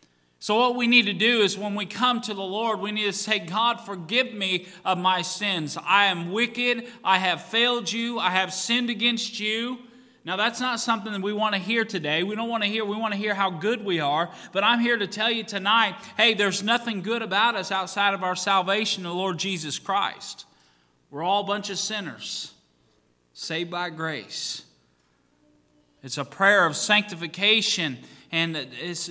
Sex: male